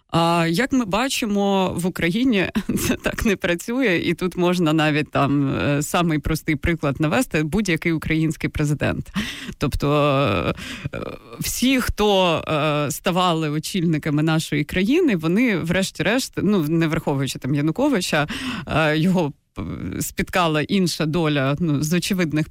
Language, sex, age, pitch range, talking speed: Ukrainian, female, 20-39, 150-190 Hz, 110 wpm